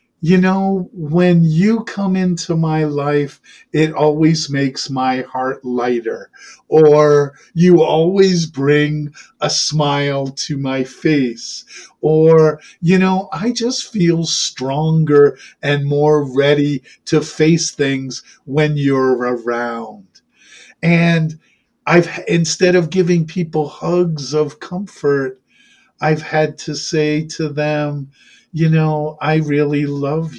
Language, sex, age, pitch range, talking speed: English, male, 50-69, 140-165 Hz, 115 wpm